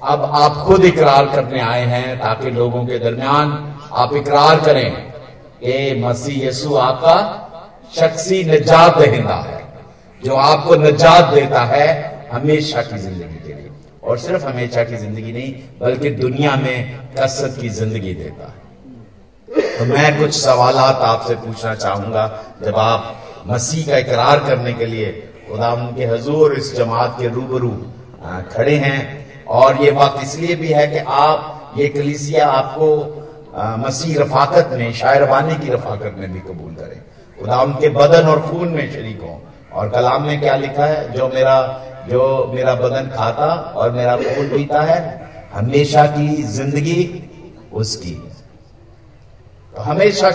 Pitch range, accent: 115-150 Hz, native